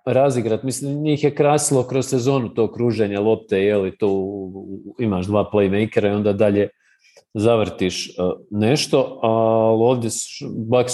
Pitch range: 115-145 Hz